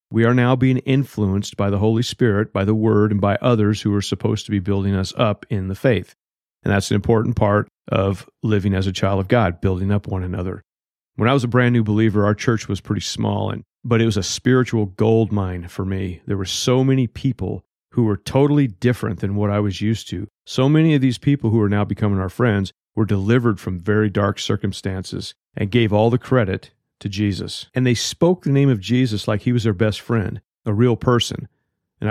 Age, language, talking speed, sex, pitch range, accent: 40-59, English, 225 wpm, male, 100-125 Hz, American